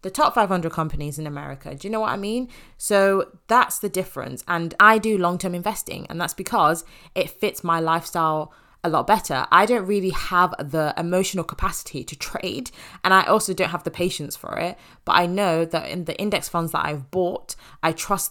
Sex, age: female, 20-39